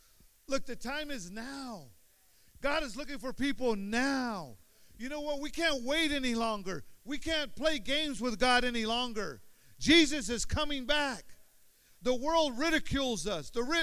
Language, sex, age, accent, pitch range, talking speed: English, male, 50-69, American, 165-265 Hz, 155 wpm